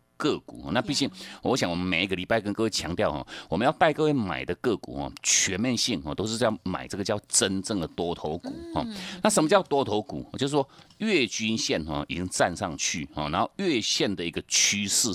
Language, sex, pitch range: Chinese, male, 90-120 Hz